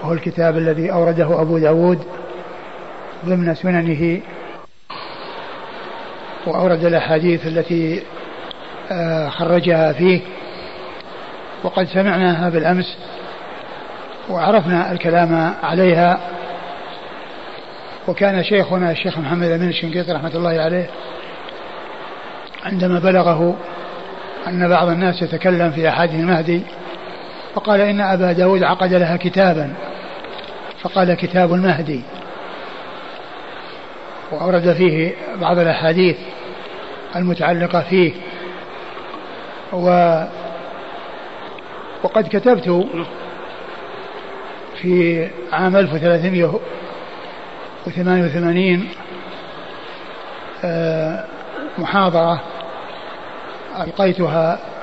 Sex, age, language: male, 60-79, Arabic